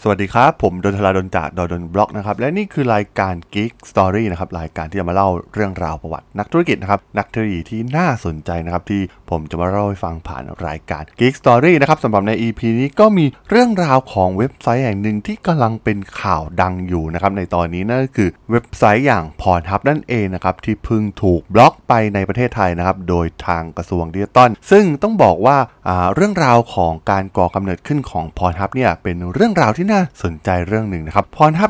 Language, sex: Thai, male